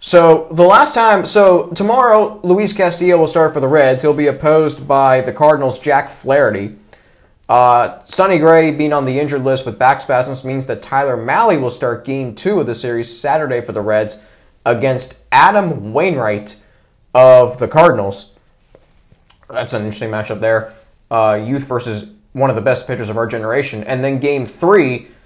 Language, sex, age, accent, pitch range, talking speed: English, male, 20-39, American, 115-165 Hz, 175 wpm